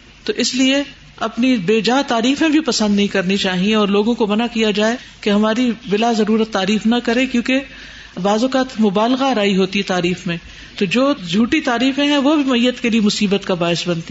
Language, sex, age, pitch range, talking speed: Urdu, female, 50-69, 200-250 Hz, 195 wpm